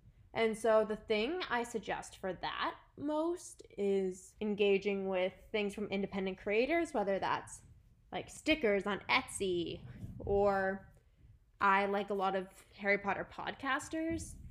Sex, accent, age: female, American, 10-29